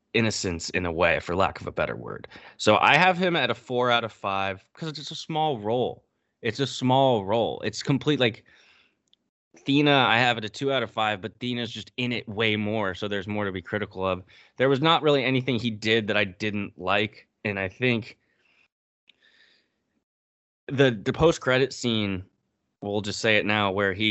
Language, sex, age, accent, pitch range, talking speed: English, male, 20-39, American, 95-125 Hz, 200 wpm